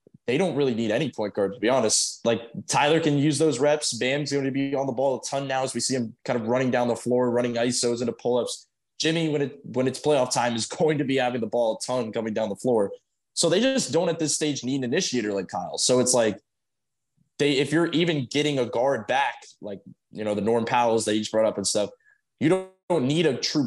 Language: English